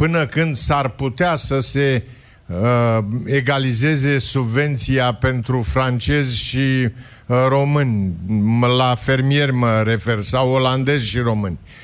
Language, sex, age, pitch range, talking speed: Romanian, male, 50-69, 120-155 Hz, 110 wpm